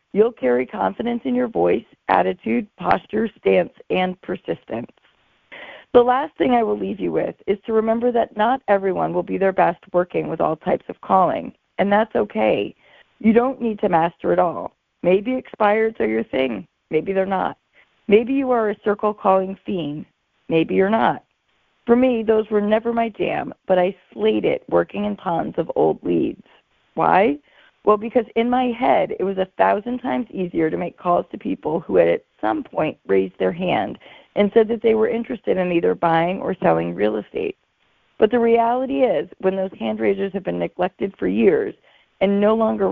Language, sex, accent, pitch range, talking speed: English, female, American, 180-235 Hz, 185 wpm